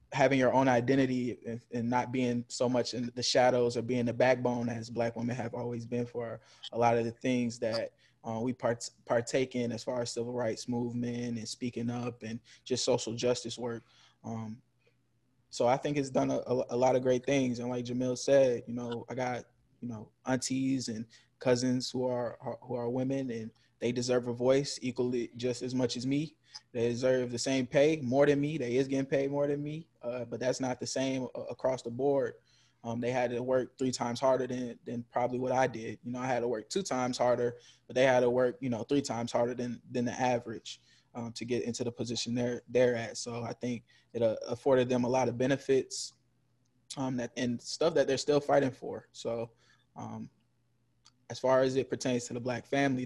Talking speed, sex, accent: 215 wpm, male, American